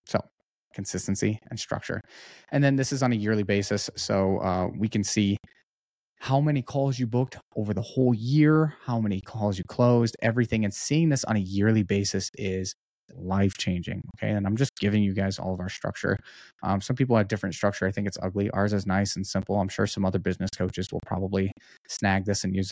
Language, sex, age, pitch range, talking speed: English, male, 20-39, 95-120 Hz, 210 wpm